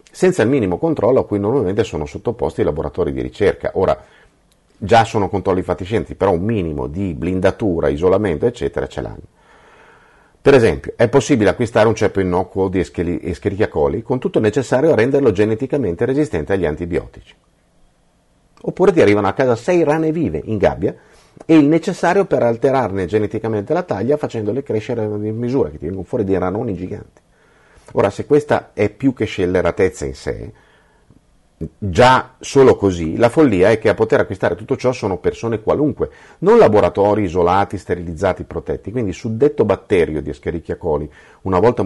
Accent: native